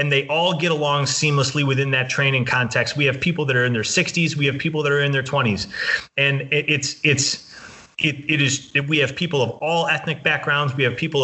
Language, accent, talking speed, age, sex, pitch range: English, American, 230 wpm, 30-49, male, 125-155 Hz